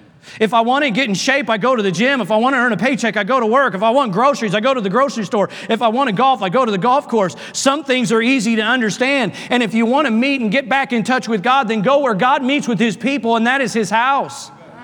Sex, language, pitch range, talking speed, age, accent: male, English, 165-260 Hz, 305 wpm, 40-59, American